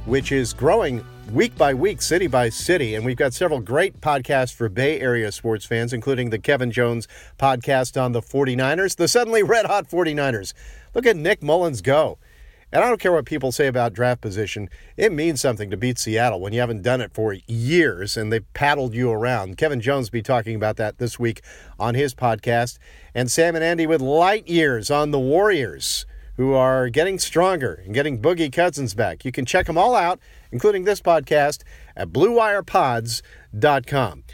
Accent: American